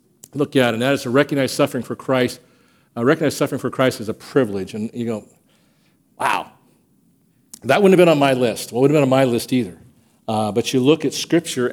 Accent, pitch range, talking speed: American, 120-145 Hz, 215 wpm